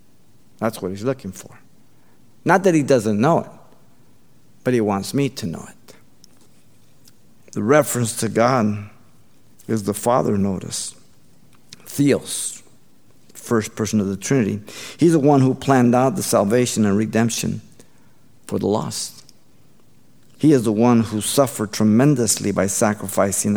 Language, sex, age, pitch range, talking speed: English, male, 50-69, 105-125 Hz, 135 wpm